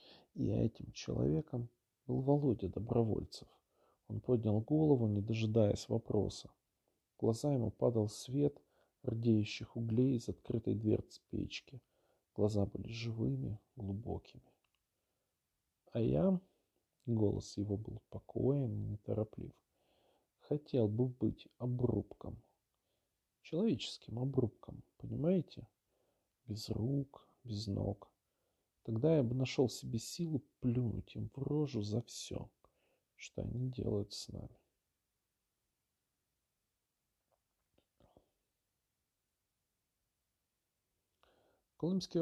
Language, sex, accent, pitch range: Ukrainian, male, native, 105-135 Hz